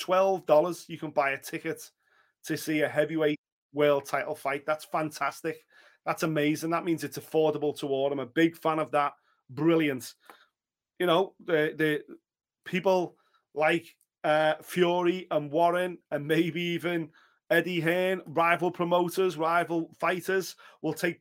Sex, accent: male, British